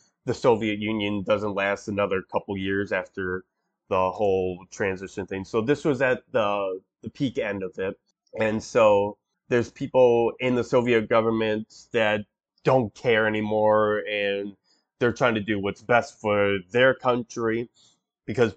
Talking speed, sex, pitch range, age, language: 150 wpm, male, 105-125 Hz, 20-39, English